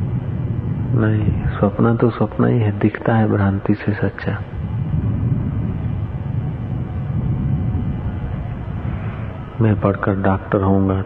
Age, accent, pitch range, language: 40-59, native, 95-110 Hz, Hindi